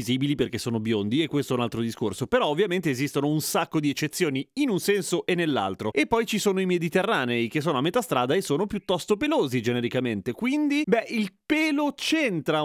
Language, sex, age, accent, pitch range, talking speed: Italian, male, 30-49, native, 140-200 Hz, 200 wpm